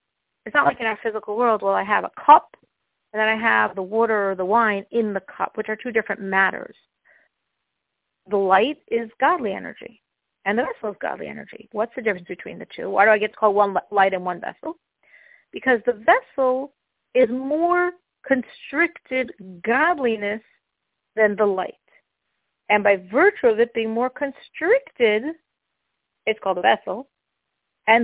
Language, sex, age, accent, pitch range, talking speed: English, female, 50-69, American, 215-295 Hz, 170 wpm